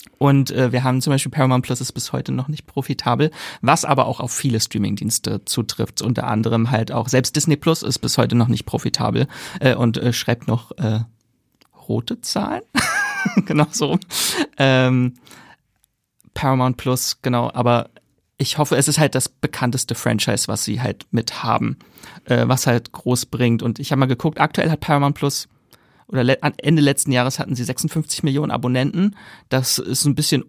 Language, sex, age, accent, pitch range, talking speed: German, male, 30-49, German, 120-145 Hz, 175 wpm